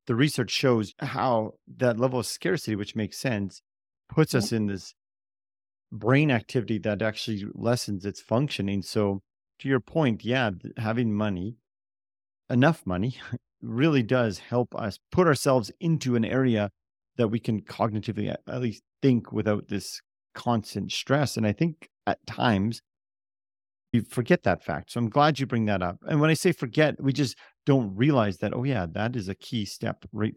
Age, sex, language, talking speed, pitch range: 40-59, male, English, 170 wpm, 100-135 Hz